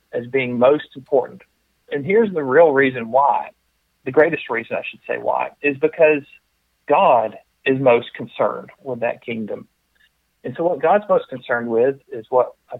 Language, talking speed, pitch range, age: English, 160 wpm, 125-165 Hz, 40-59